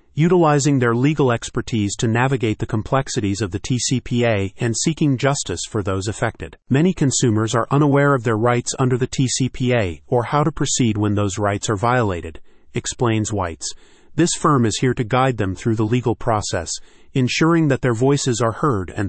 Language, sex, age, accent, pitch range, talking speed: English, male, 40-59, American, 105-135 Hz, 175 wpm